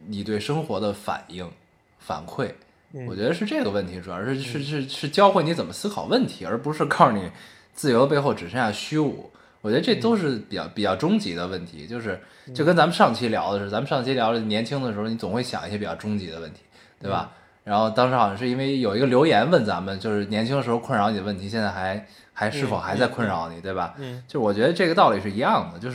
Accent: native